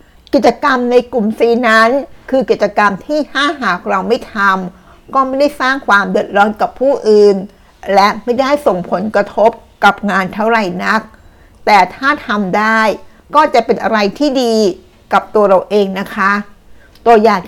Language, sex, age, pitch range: Thai, female, 60-79, 200-240 Hz